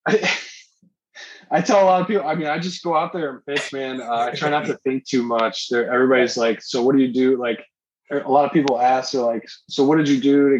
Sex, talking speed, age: male, 265 wpm, 20-39